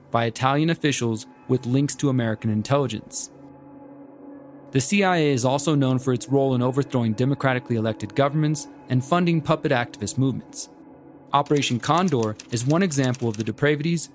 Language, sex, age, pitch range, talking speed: English, male, 30-49, 120-150 Hz, 145 wpm